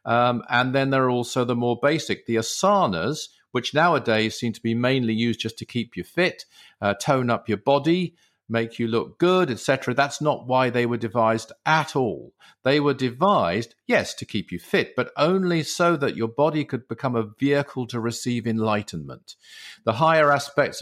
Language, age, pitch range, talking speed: English, 50-69, 115-145 Hz, 185 wpm